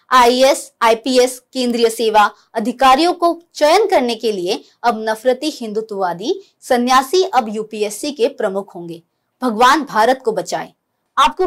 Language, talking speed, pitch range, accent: Hindi, 125 wpm, 215-295 Hz, native